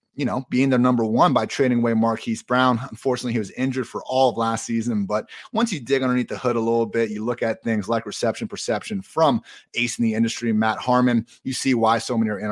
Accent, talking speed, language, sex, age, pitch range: American, 245 wpm, English, male, 30-49, 115-145 Hz